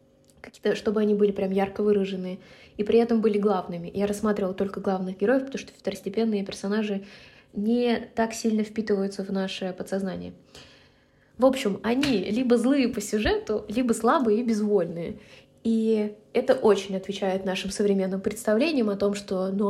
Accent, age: native, 20-39